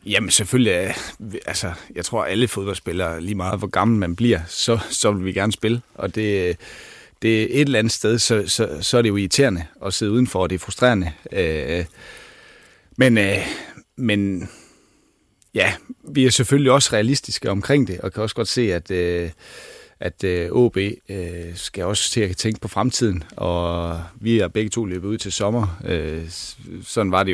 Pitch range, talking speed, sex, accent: 90-115 Hz, 175 wpm, male, native